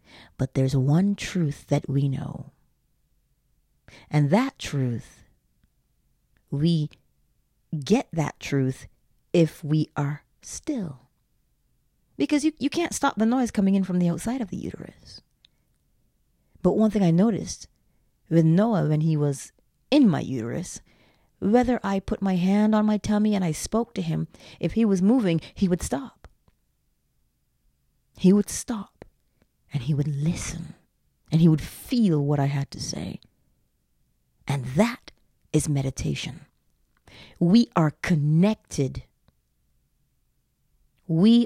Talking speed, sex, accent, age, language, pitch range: 130 wpm, female, American, 40-59, English, 140-205 Hz